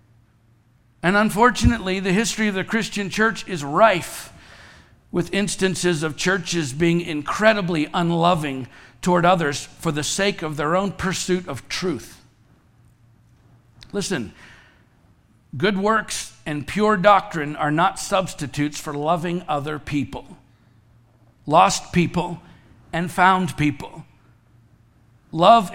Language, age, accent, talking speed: English, 50-69, American, 110 wpm